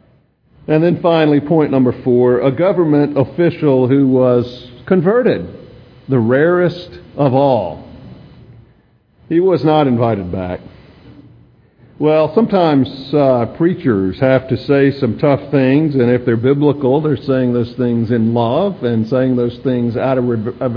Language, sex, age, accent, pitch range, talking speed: English, male, 50-69, American, 115-145 Hz, 140 wpm